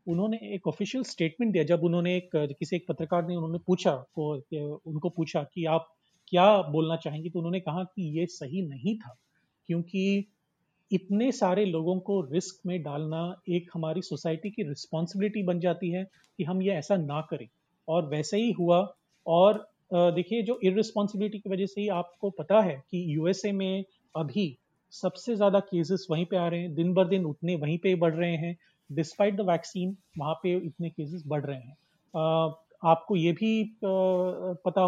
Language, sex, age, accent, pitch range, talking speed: Hindi, male, 30-49, native, 160-195 Hz, 175 wpm